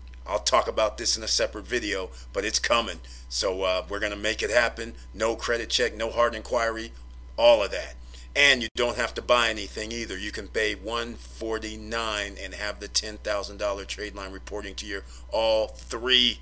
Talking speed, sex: 185 wpm, male